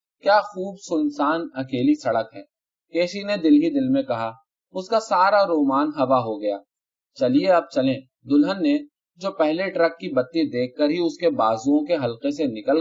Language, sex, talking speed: Urdu, male, 185 wpm